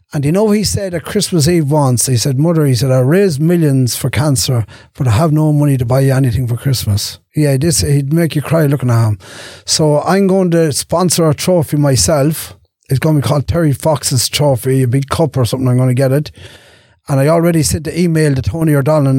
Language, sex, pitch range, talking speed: English, male, 130-160 Hz, 230 wpm